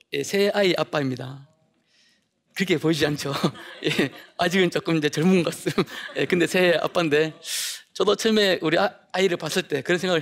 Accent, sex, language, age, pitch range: native, male, Korean, 40-59, 150-200 Hz